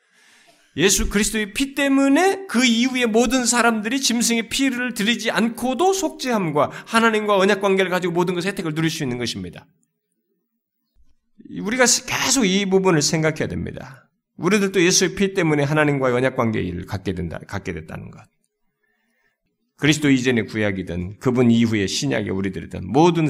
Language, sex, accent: Korean, male, native